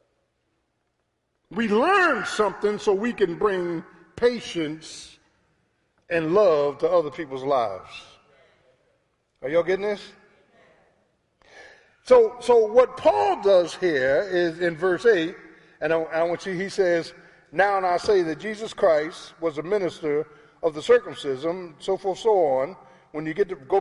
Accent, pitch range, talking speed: American, 170-220 Hz, 145 wpm